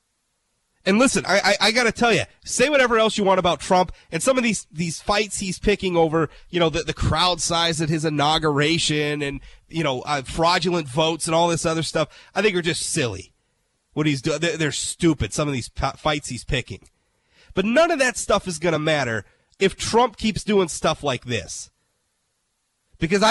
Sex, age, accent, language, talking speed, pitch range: male, 30-49, American, English, 205 wpm, 140-195 Hz